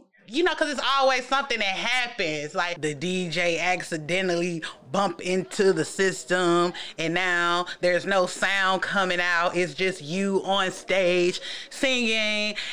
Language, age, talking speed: English, 30-49, 135 wpm